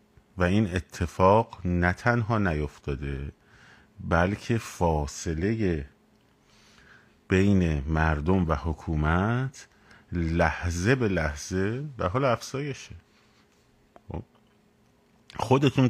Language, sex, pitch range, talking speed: Persian, male, 80-105 Hz, 70 wpm